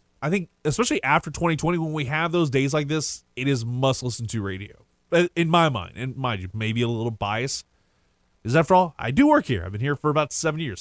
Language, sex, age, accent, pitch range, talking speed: English, male, 20-39, American, 115-165 Hz, 240 wpm